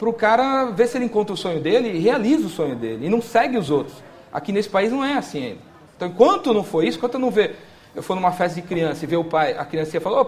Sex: male